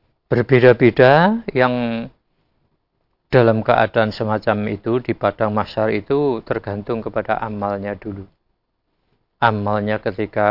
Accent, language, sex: native, Indonesian, male